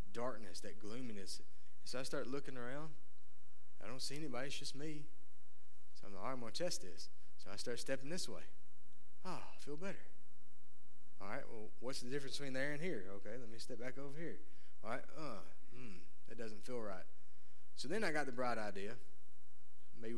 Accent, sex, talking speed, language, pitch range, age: American, male, 195 wpm, English, 115-165 Hz, 30-49